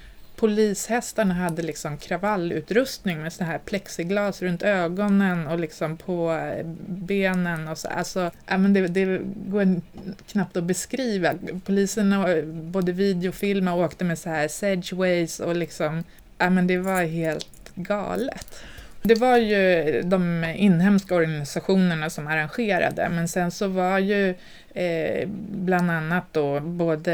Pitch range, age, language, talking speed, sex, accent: 155-185 Hz, 20-39, Swedish, 120 wpm, female, native